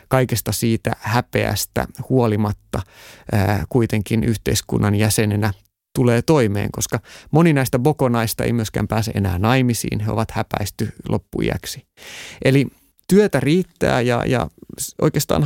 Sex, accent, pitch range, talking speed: male, native, 105-135 Hz, 115 wpm